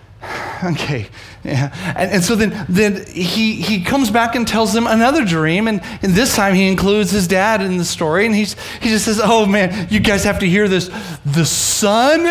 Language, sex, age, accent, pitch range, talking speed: English, male, 30-49, American, 150-220 Hz, 205 wpm